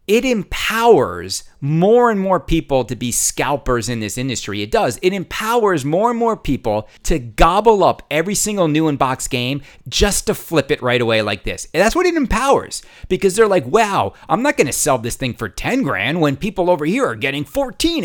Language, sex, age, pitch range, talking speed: English, male, 30-49, 125-195 Hz, 205 wpm